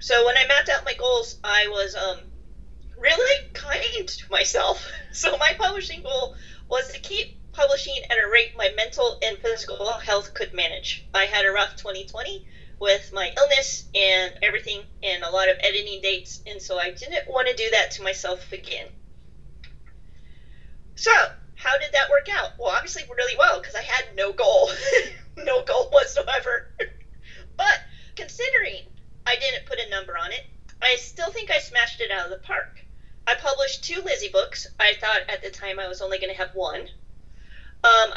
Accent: American